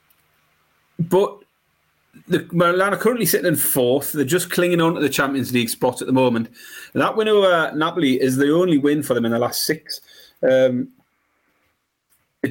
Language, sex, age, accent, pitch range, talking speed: English, male, 30-49, British, 115-140 Hz, 170 wpm